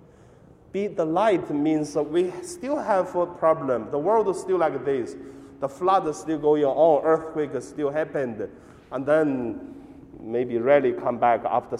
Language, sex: Chinese, male